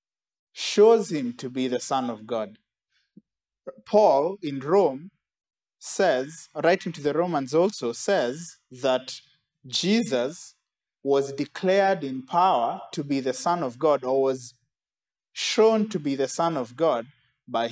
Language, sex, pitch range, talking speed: English, male, 130-175 Hz, 135 wpm